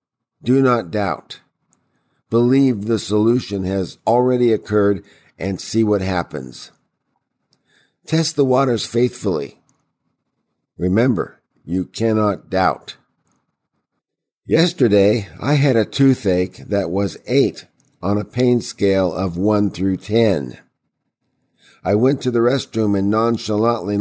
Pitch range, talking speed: 95-120 Hz, 110 wpm